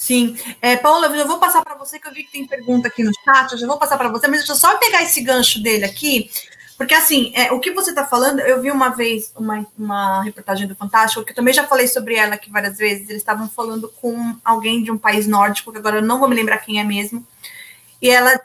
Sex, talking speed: female, 260 wpm